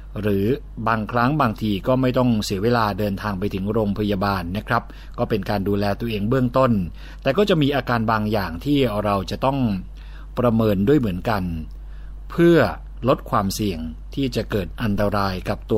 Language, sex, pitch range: Thai, male, 100-130 Hz